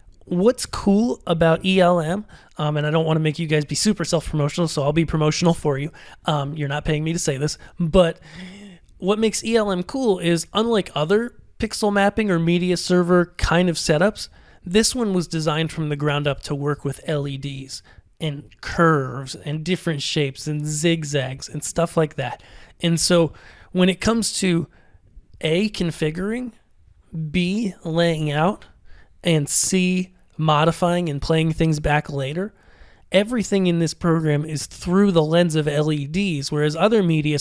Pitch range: 150-180 Hz